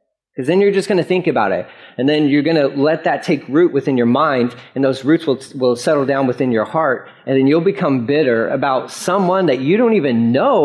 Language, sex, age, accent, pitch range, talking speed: English, male, 30-49, American, 135-195 Hz, 240 wpm